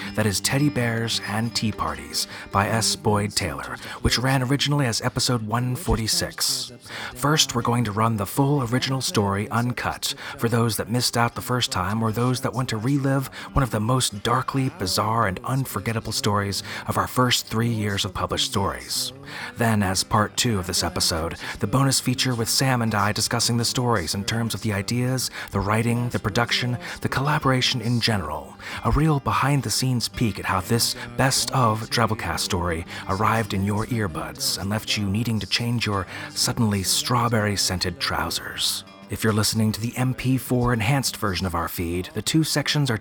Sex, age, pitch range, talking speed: male, 30-49, 100-130 Hz, 175 wpm